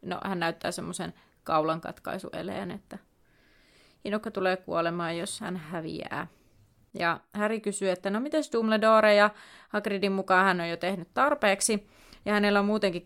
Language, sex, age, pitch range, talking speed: Finnish, female, 30-49, 170-210 Hz, 145 wpm